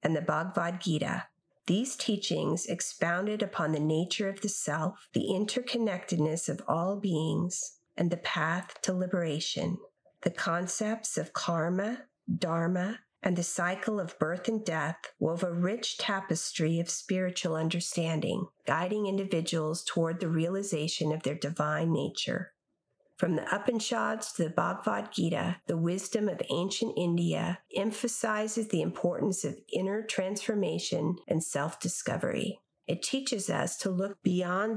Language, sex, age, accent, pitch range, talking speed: English, female, 50-69, American, 170-205 Hz, 135 wpm